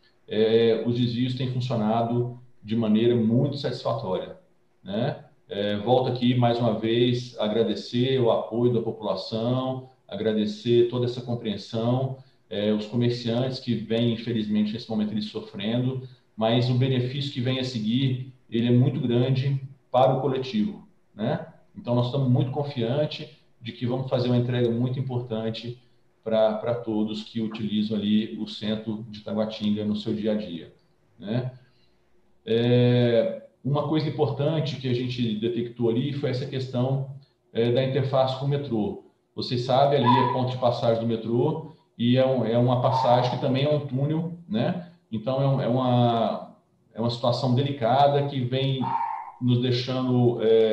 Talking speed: 155 wpm